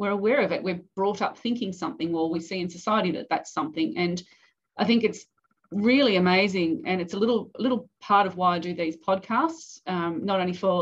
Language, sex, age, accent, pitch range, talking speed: English, female, 30-49, Australian, 175-210 Hz, 215 wpm